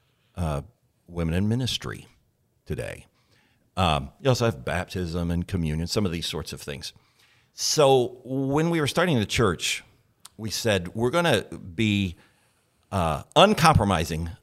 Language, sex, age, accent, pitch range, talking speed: English, male, 50-69, American, 90-120 Hz, 135 wpm